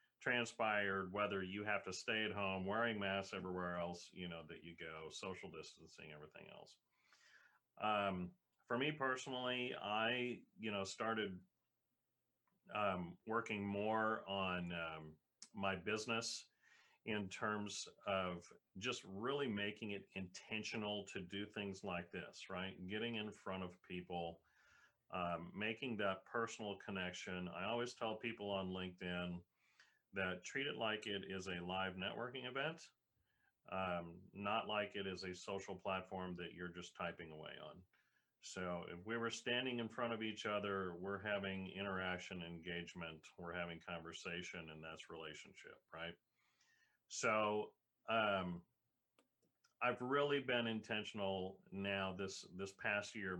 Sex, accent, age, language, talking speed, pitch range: male, American, 40-59, English, 135 wpm, 90-105 Hz